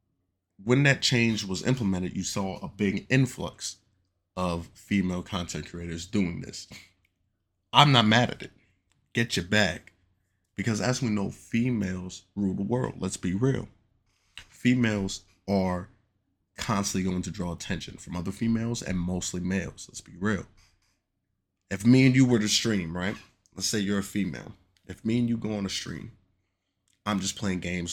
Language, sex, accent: English, male, American